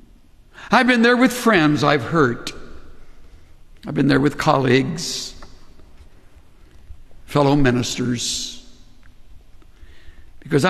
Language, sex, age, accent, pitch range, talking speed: English, male, 60-79, American, 105-145 Hz, 85 wpm